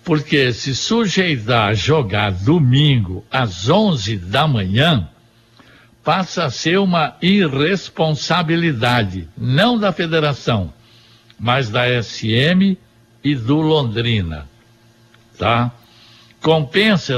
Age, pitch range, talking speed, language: 60-79, 115-165 Hz, 90 wpm, Portuguese